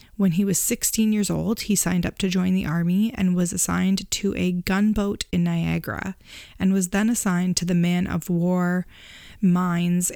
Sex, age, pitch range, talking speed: female, 20-39, 175-200 Hz, 185 wpm